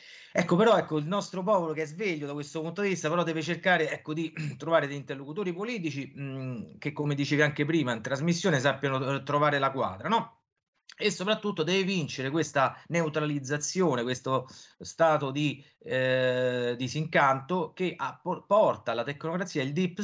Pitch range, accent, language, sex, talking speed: 120-165 Hz, native, Italian, male, 160 wpm